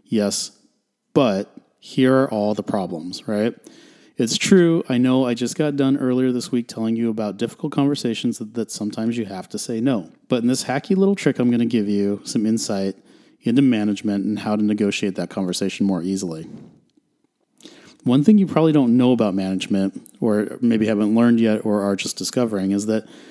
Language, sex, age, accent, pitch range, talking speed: English, male, 30-49, American, 105-125 Hz, 190 wpm